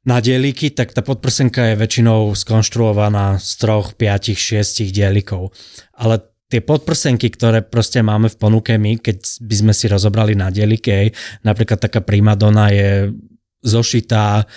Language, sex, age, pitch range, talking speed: Slovak, male, 20-39, 105-115 Hz, 145 wpm